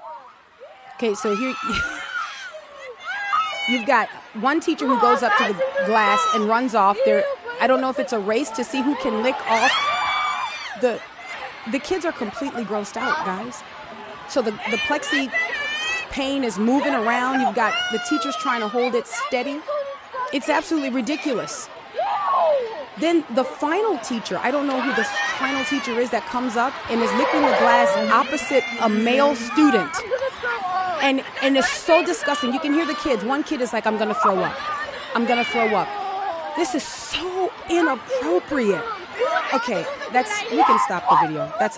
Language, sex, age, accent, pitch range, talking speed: English, female, 30-49, American, 215-290 Hz, 170 wpm